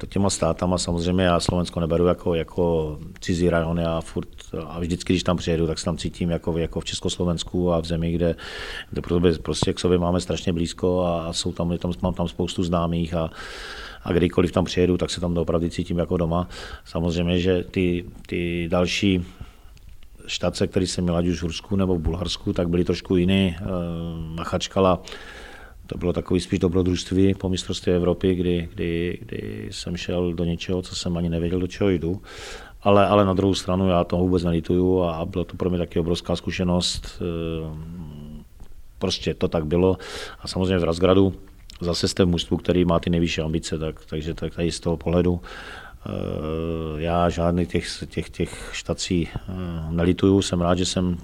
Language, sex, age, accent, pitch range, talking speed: Czech, male, 40-59, native, 85-90 Hz, 175 wpm